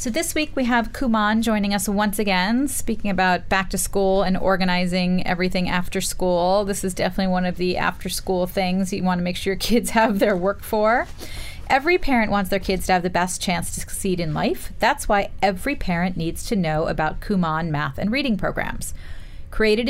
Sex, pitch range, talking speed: female, 180-235 Hz, 200 wpm